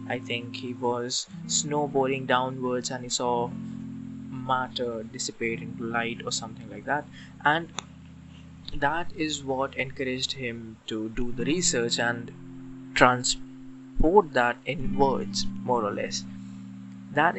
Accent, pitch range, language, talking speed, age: Indian, 120-155 Hz, English, 125 wpm, 20-39